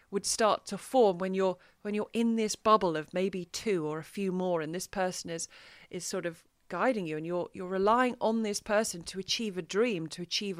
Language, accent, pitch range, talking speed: English, British, 185-235 Hz, 225 wpm